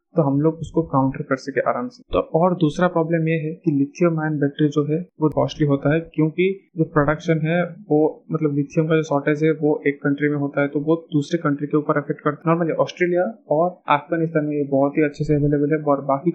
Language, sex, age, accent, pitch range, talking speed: Hindi, male, 20-39, native, 140-165 Hz, 230 wpm